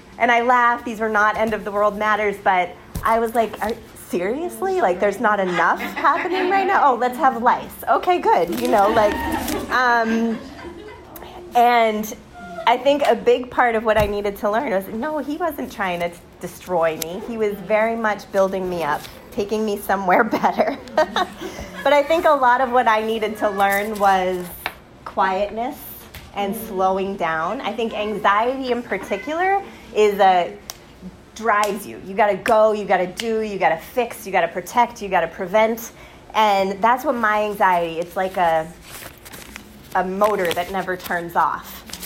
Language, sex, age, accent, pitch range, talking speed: English, female, 30-49, American, 190-235 Hz, 175 wpm